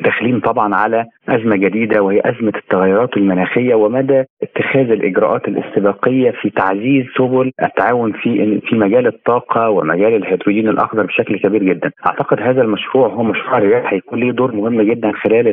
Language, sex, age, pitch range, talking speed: Arabic, male, 30-49, 105-130 Hz, 150 wpm